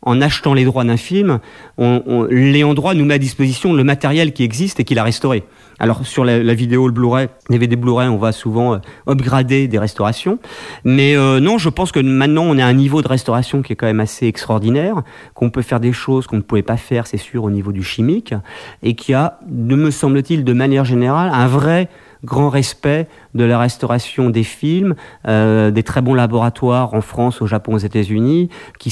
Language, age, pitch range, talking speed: French, 40-59, 110-135 Hz, 210 wpm